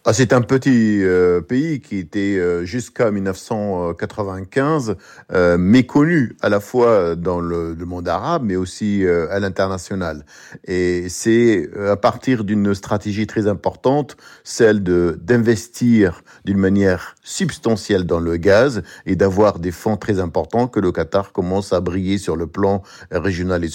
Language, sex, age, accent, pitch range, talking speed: French, male, 50-69, French, 90-110 Hz, 155 wpm